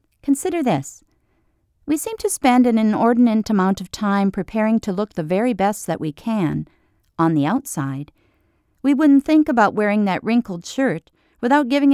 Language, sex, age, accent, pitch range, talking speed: English, female, 50-69, American, 175-265 Hz, 165 wpm